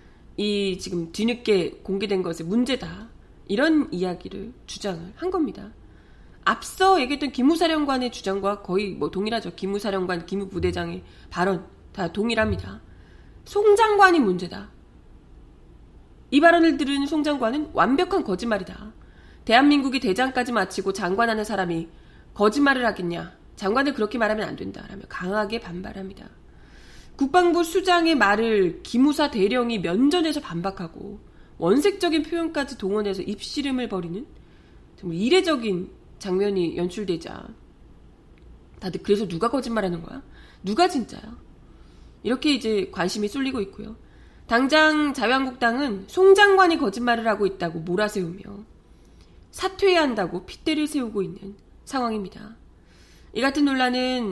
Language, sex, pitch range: Korean, female, 190-285 Hz